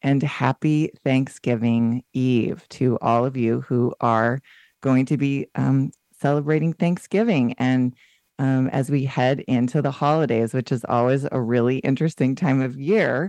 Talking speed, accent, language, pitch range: 150 wpm, American, English, 125-145 Hz